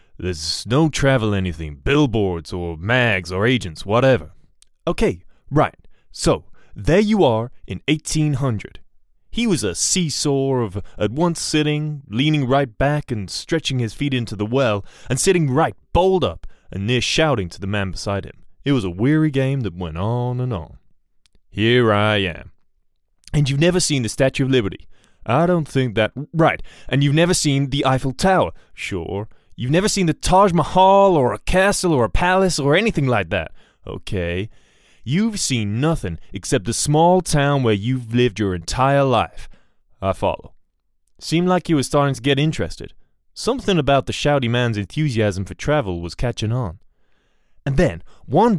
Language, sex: English, male